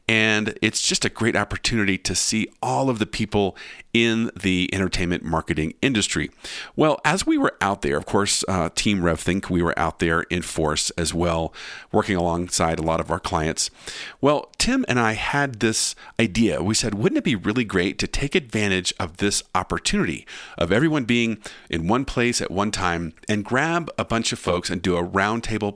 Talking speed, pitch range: 195 wpm, 90-115 Hz